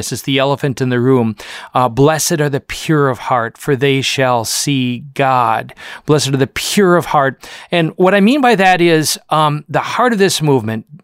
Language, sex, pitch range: English, male, 135-185 Hz